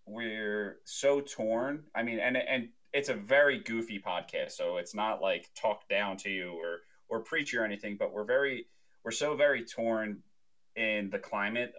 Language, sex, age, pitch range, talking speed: English, male, 30-49, 95-125 Hz, 180 wpm